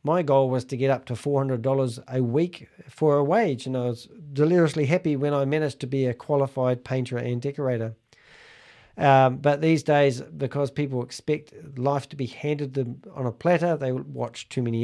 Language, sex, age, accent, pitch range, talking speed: English, male, 40-59, Australian, 125-145 Hz, 190 wpm